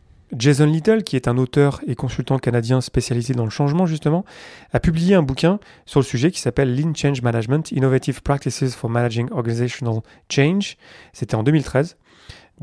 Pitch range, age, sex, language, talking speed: 120-160 Hz, 30-49, male, French, 165 wpm